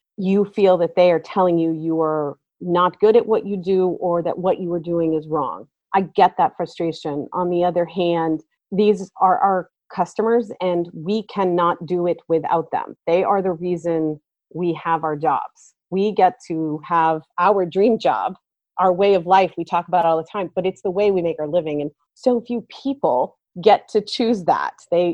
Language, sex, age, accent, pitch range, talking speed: English, female, 30-49, American, 165-205 Hz, 200 wpm